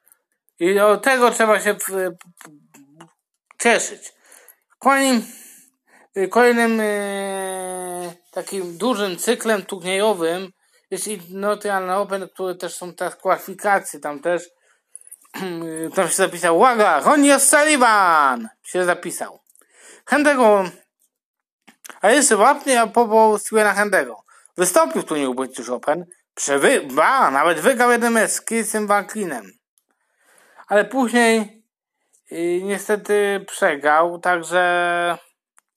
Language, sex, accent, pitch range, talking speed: Polish, male, native, 170-225 Hz, 95 wpm